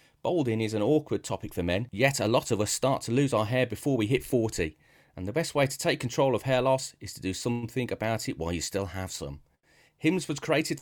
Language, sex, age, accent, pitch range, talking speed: English, male, 30-49, British, 105-140 Hz, 250 wpm